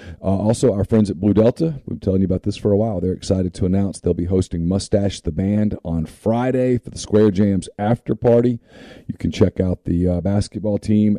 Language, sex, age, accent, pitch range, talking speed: English, male, 40-59, American, 90-110 Hz, 225 wpm